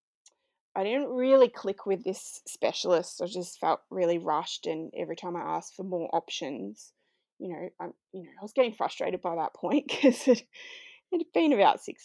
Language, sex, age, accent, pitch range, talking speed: English, female, 20-39, Australian, 190-290 Hz, 190 wpm